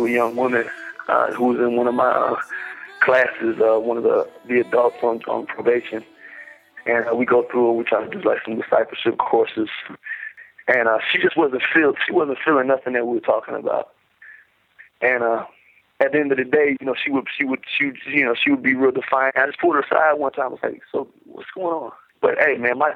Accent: American